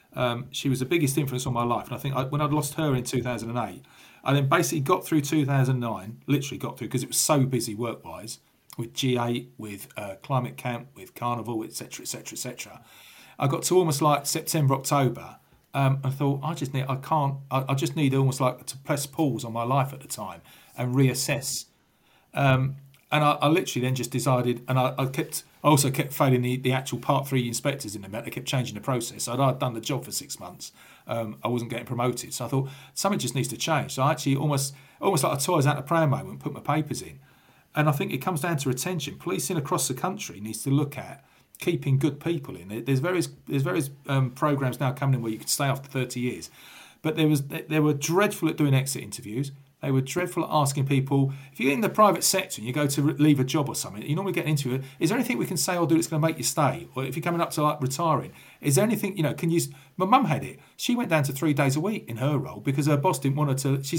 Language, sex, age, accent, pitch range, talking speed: English, male, 40-59, British, 130-155 Hz, 255 wpm